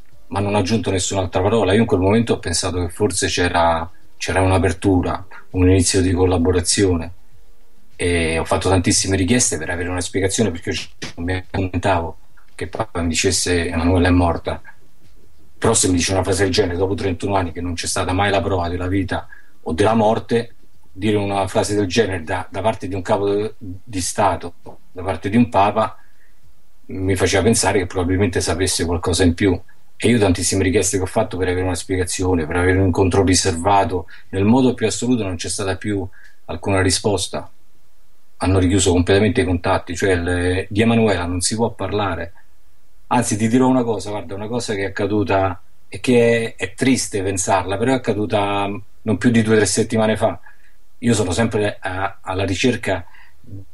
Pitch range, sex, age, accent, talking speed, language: 90-105 Hz, male, 40-59, native, 185 wpm, Italian